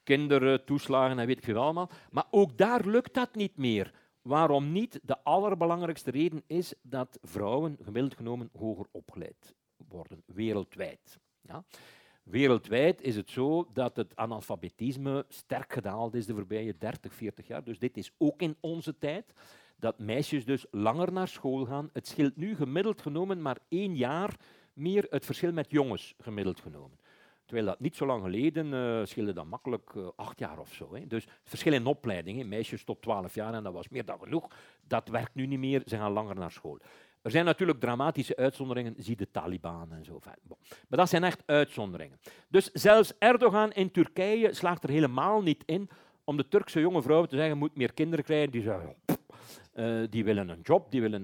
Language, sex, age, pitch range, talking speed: Dutch, male, 50-69, 115-170 Hz, 185 wpm